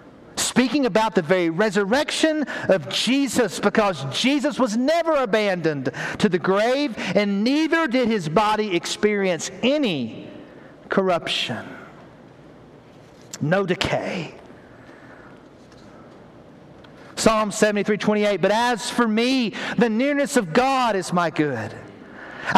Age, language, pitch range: 50-69, English, 200-275 Hz